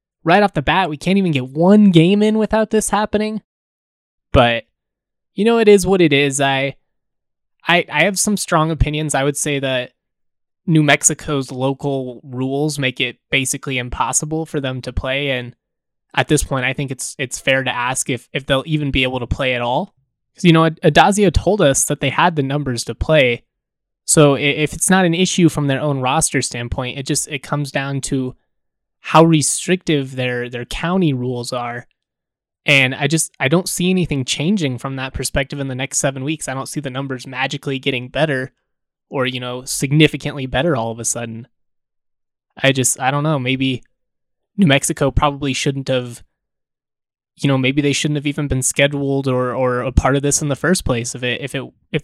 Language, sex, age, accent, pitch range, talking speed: English, male, 20-39, American, 130-155 Hz, 195 wpm